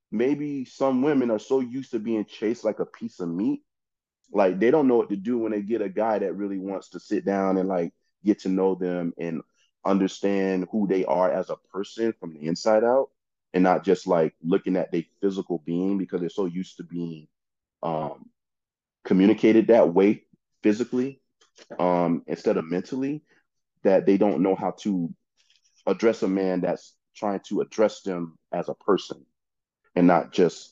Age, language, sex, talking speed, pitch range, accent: 30-49, English, male, 185 wpm, 85-115 Hz, American